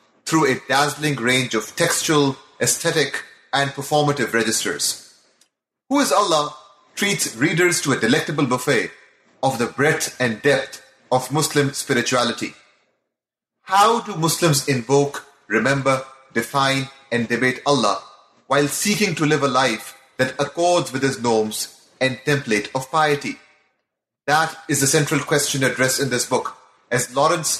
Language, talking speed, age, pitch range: English, 135 wpm, 30-49, 130-160 Hz